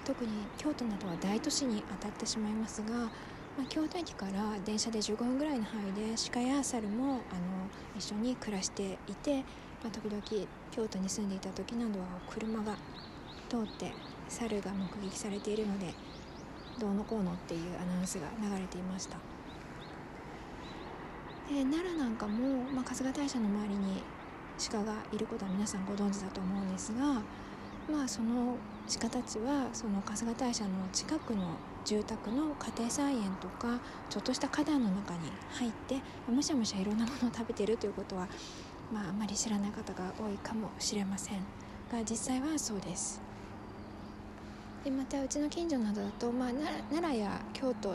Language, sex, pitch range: Japanese, female, 200-245 Hz